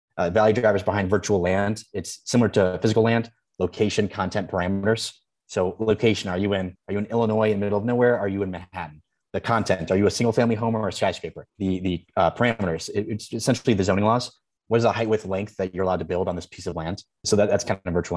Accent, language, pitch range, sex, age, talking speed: American, English, 90-110 Hz, male, 30-49, 235 wpm